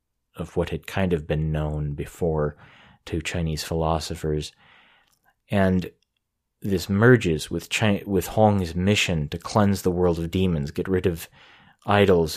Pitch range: 85-100 Hz